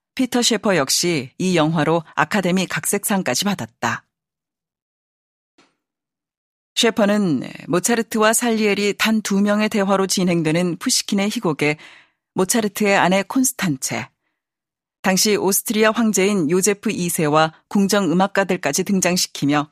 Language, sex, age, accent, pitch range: Korean, female, 40-59, native, 170-210 Hz